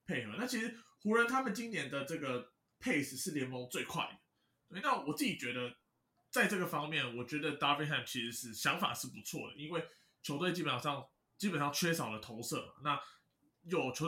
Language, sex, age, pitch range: Chinese, male, 20-39, 125-185 Hz